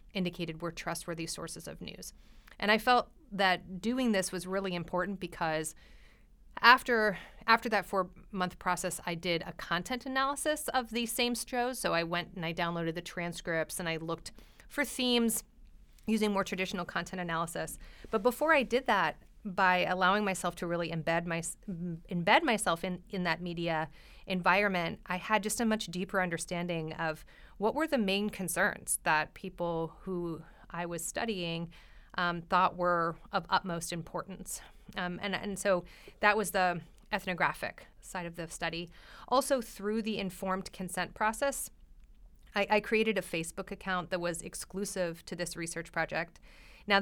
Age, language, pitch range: 30-49, English, 170-210 Hz